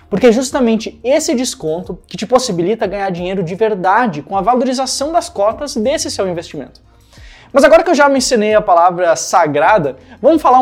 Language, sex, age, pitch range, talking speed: Portuguese, male, 20-39, 185-260 Hz, 175 wpm